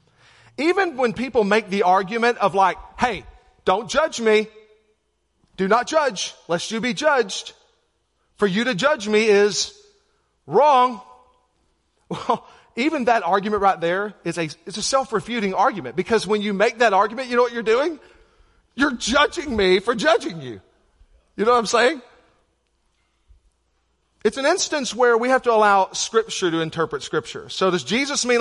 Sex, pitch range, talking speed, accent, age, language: male, 190-245 Hz, 160 wpm, American, 40-59, English